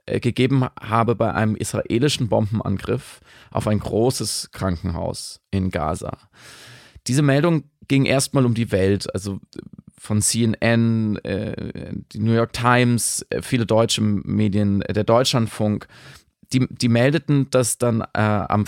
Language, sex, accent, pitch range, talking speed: German, male, German, 105-120 Hz, 120 wpm